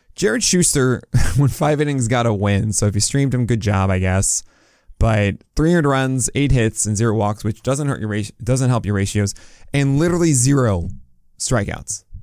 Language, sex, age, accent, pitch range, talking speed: English, male, 20-39, American, 105-140 Hz, 180 wpm